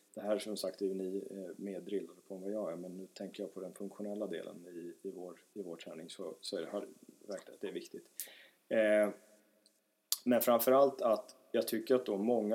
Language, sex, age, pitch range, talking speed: Swedish, male, 30-49, 100-125 Hz, 215 wpm